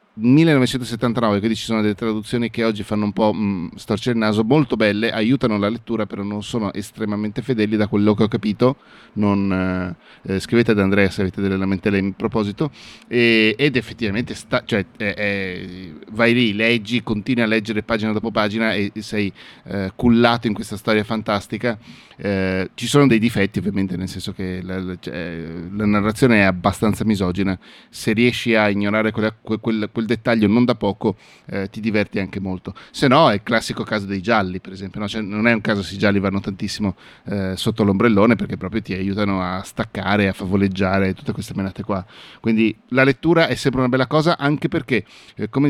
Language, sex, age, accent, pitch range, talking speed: Italian, male, 30-49, native, 100-120 Hz, 190 wpm